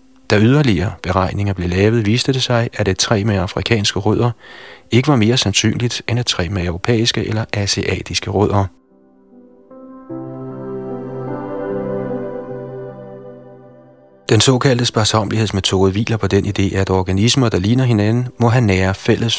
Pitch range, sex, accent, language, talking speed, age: 95-115 Hz, male, native, Danish, 130 wpm, 30-49